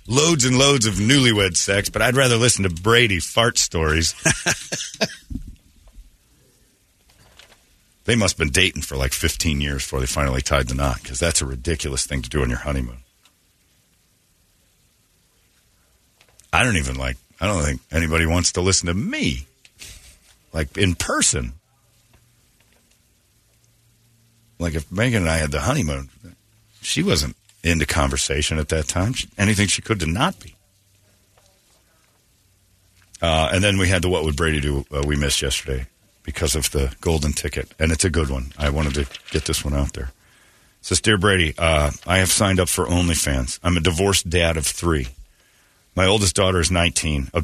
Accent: American